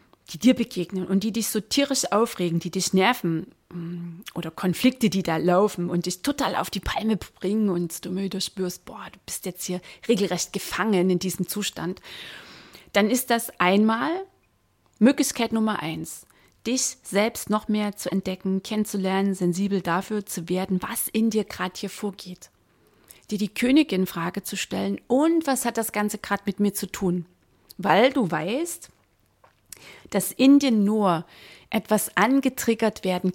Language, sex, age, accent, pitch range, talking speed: German, female, 30-49, German, 180-220 Hz, 160 wpm